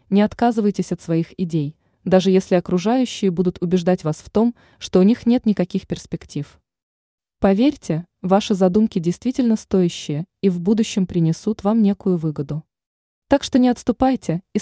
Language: Russian